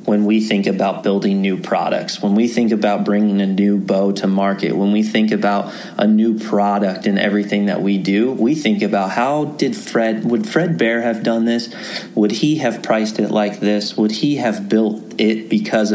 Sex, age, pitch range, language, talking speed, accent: male, 30-49, 105-115 Hz, English, 205 wpm, American